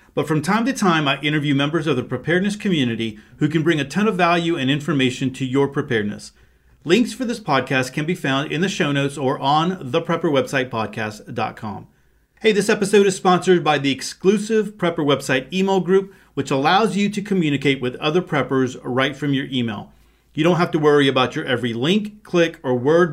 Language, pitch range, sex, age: English, 135-175 Hz, male, 40-59